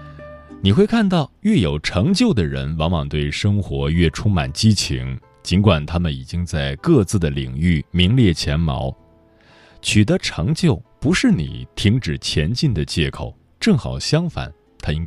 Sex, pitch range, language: male, 75-110 Hz, Chinese